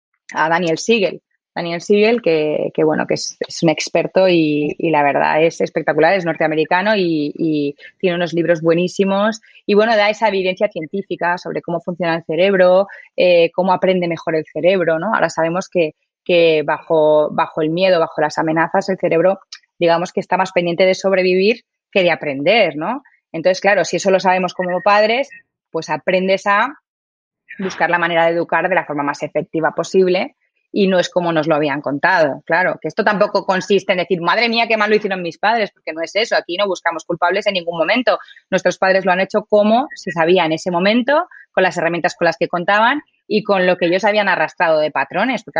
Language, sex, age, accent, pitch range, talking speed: Spanish, female, 20-39, Spanish, 165-205 Hz, 200 wpm